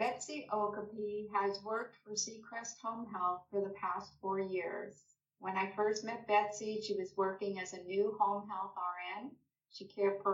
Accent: American